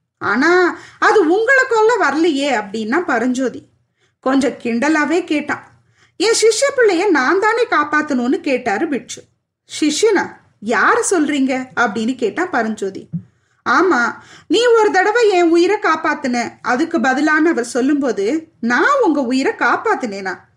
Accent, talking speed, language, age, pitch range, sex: native, 45 wpm, Tamil, 20-39, 260-390 Hz, female